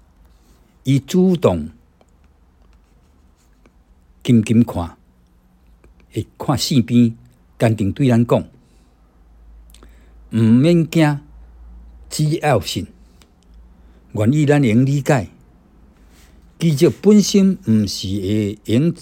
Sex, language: male, Chinese